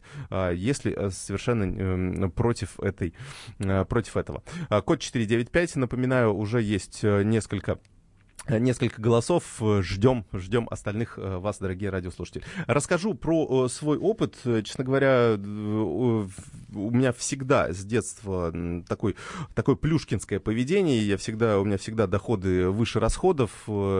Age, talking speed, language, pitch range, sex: 30-49, 105 wpm, Russian, 95-125 Hz, male